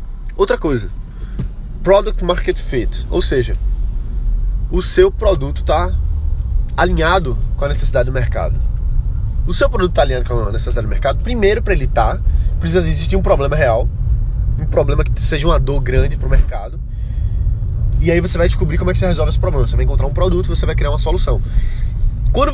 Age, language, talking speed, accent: 20-39, Portuguese, 185 wpm, Brazilian